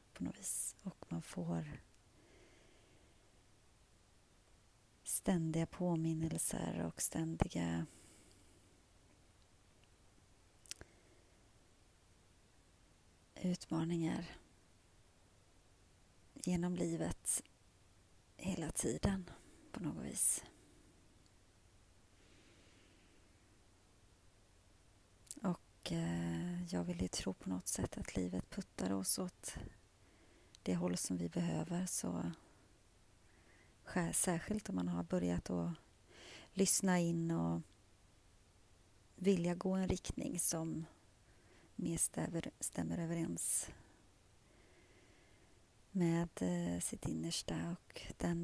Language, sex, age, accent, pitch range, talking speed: Swedish, female, 30-49, native, 90-115 Hz, 75 wpm